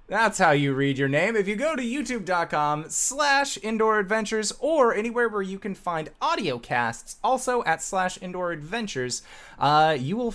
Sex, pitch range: male, 140-215 Hz